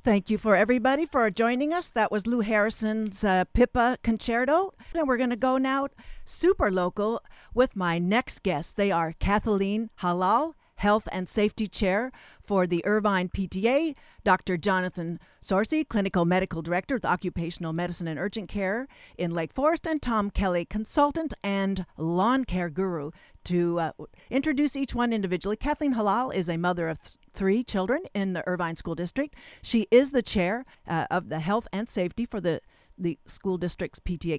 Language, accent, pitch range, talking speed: English, American, 180-235 Hz, 170 wpm